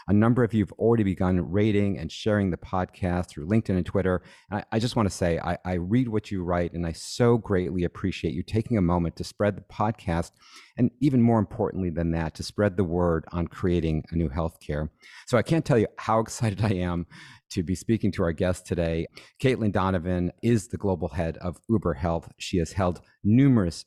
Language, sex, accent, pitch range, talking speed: English, male, American, 85-105 Hz, 215 wpm